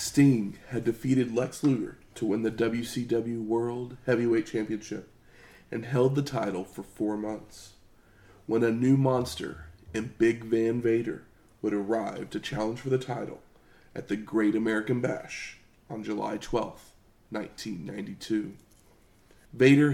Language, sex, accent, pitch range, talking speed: English, male, American, 110-125 Hz, 130 wpm